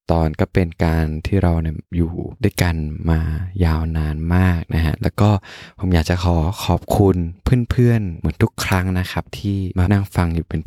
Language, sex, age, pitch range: Thai, male, 20-39, 85-105 Hz